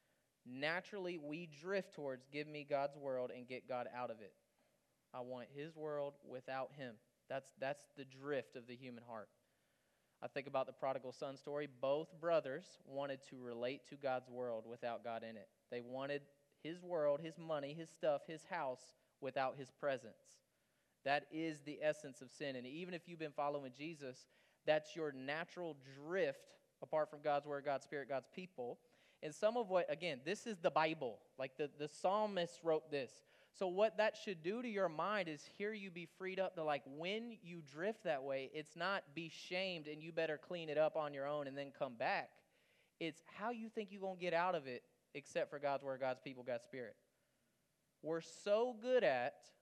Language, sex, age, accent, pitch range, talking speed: English, male, 30-49, American, 135-175 Hz, 195 wpm